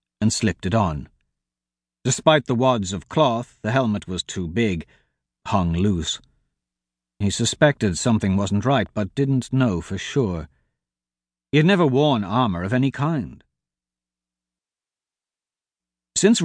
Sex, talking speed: male, 125 wpm